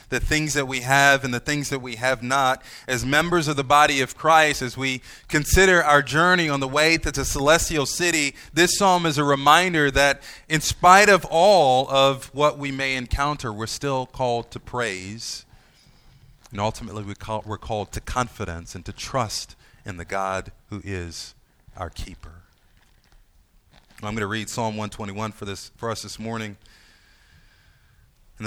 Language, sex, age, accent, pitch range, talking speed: English, male, 30-49, American, 105-145 Hz, 165 wpm